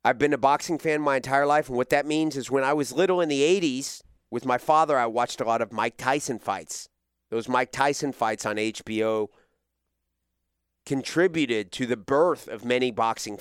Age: 30-49